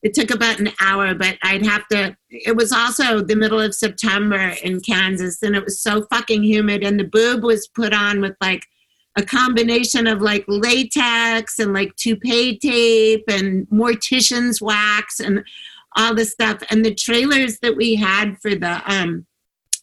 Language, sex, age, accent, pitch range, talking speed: English, female, 50-69, American, 195-225 Hz, 175 wpm